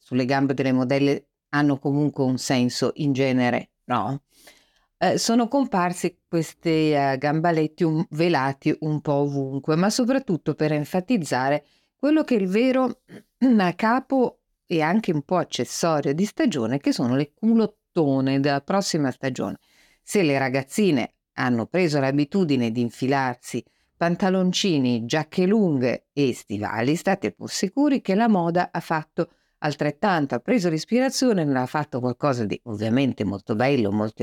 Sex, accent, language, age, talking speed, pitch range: female, native, Italian, 50-69, 140 wpm, 135-180 Hz